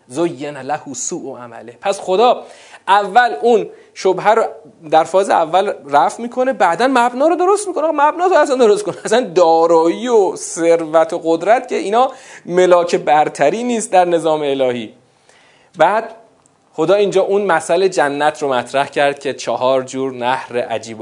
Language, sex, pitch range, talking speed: Persian, male, 160-225 Hz, 150 wpm